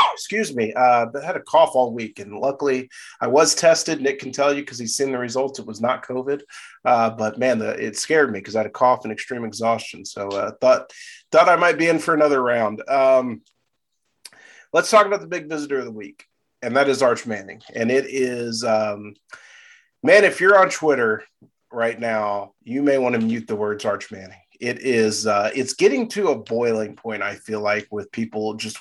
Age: 30-49